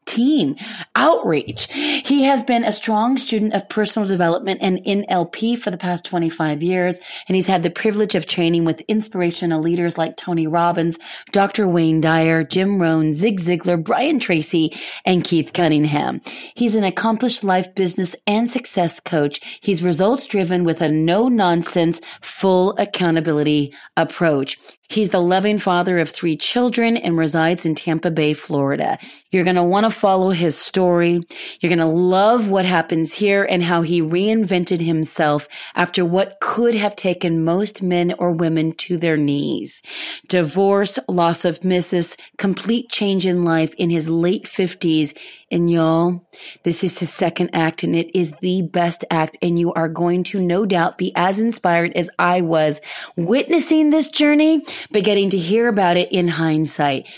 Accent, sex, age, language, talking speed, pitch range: American, female, 30-49, English, 165 wpm, 165-200 Hz